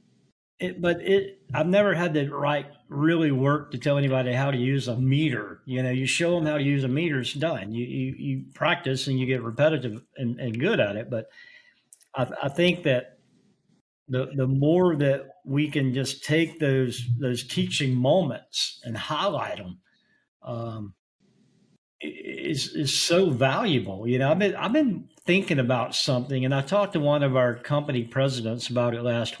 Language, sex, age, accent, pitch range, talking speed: English, male, 50-69, American, 125-150 Hz, 180 wpm